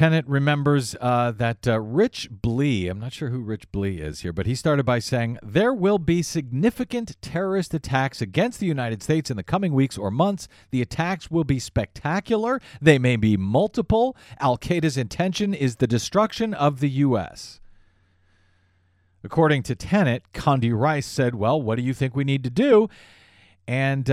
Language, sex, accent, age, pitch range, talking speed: English, male, American, 40-59, 110-175 Hz, 175 wpm